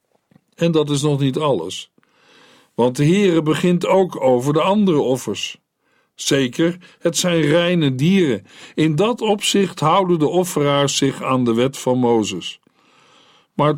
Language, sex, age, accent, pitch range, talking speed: Dutch, male, 50-69, Dutch, 130-170 Hz, 145 wpm